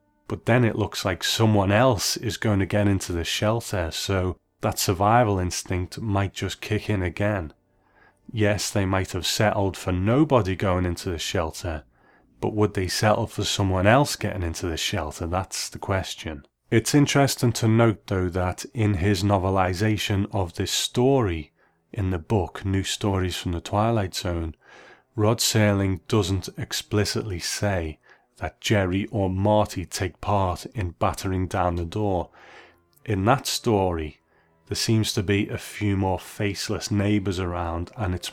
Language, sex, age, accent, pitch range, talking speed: English, male, 30-49, British, 90-105 Hz, 155 wpm